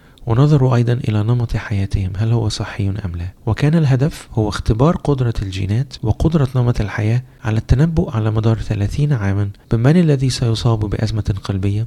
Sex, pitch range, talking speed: male, 105-130 Hz, 150 wpm